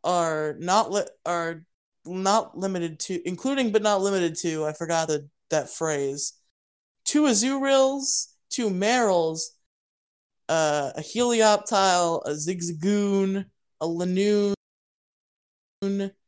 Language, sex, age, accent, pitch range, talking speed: English, male, 20-39, American, 160-205 Hz, 105 wpm